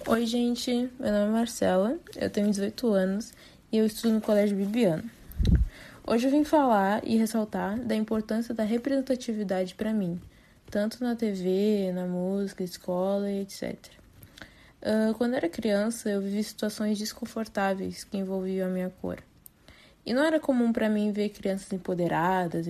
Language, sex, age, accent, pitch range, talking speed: Portuguese, female, 20-39, Brazilian, 190-225 Hz, 155 wpm